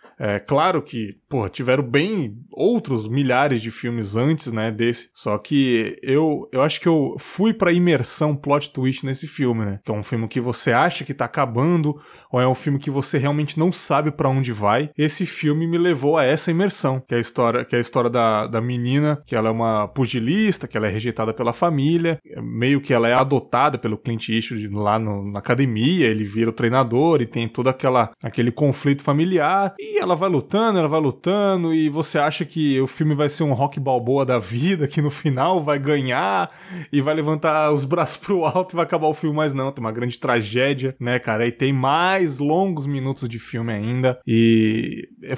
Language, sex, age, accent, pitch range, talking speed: Portuguese, male, 20-39, Brazilian, 120-155 Hz, 200 wpm